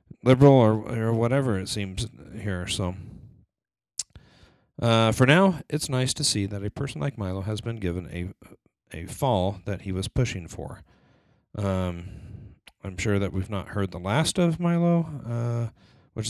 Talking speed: 160 wpm